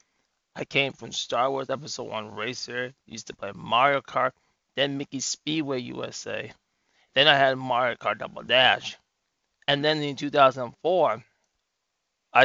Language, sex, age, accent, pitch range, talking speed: English, male, 20-39, American, 120-140 Hz, 135 wpm